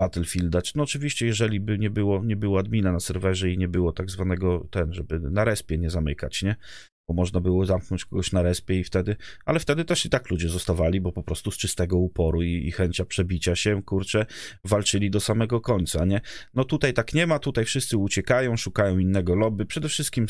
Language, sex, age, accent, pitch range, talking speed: Polish, male, 30-49, native, 90-120 Hz, 205 wpm